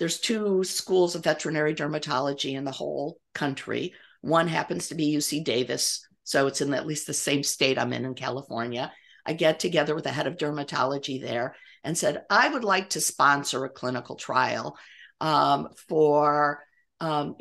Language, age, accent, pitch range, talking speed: English, 50-69, American, 145-185 Hz, 170 wpm